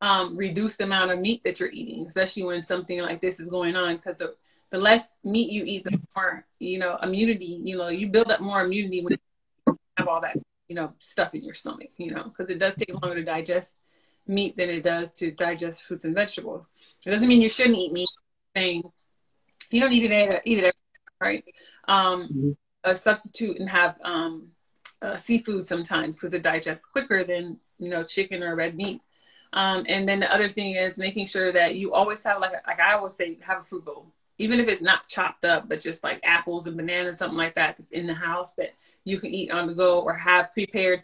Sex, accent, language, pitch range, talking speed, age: female, American, English, 175-205 Hz, 225 wpm, 30-49